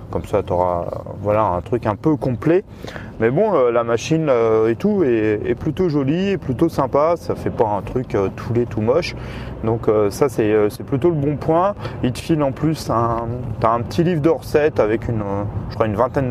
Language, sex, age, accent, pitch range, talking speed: French, male, 30-49, French, 105-130 Hz, 235 wpm